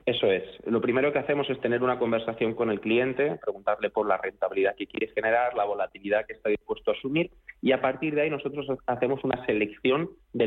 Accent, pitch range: Spanish, 110-140 Hz